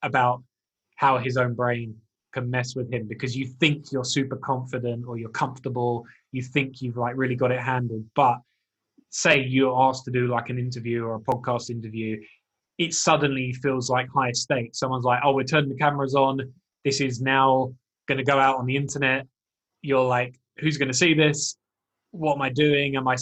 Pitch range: 120-140 Hz